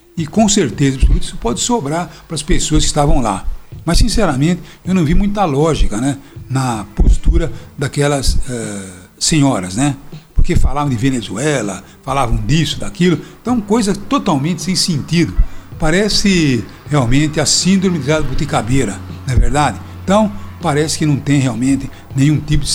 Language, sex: Portuguese, male